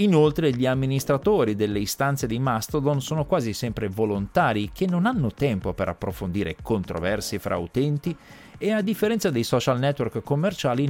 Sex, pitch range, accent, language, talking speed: male, 105-150 Hz, native, Italian, 150 wpm